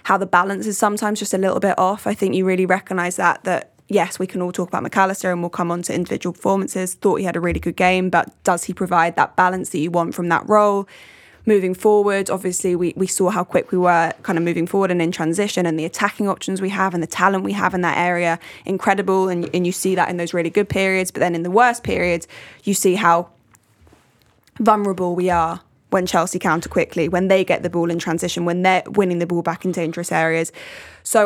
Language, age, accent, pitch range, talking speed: English, 10-29, British, 170-190 Hz, 240 wpm